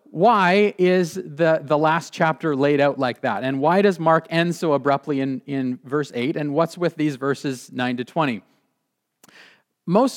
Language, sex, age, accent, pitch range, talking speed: English, male, 30-49, American, 135-170 Hz, 175 wpm